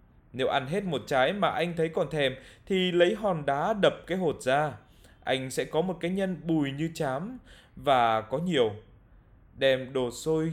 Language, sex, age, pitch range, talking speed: Vietnamese, male, 20-39, 120-175 Hz, 190 wpm